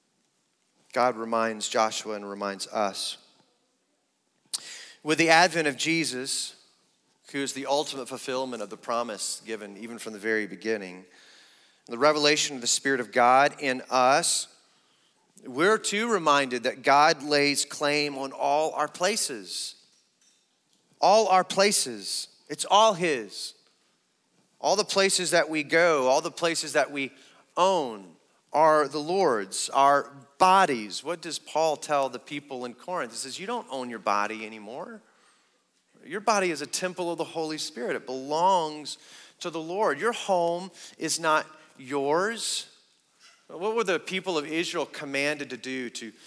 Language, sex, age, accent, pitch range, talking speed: English, male, 30-49, American, 130-170 Hz, 145 wpm